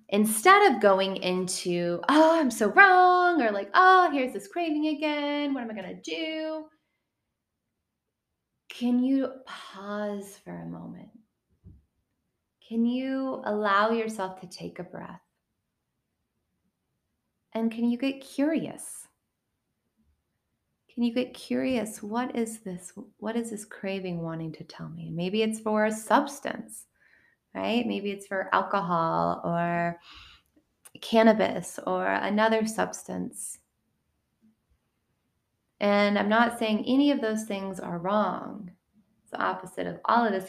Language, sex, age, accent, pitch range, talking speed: English, female, 20-39, American, 185-235 Hz, 125 wpm